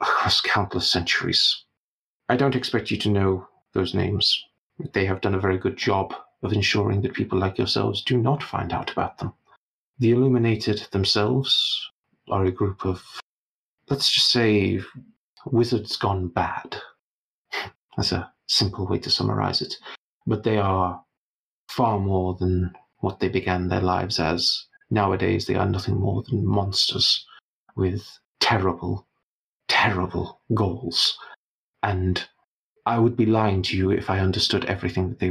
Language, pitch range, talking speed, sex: English, 95-115 Hz, 145 wpm, male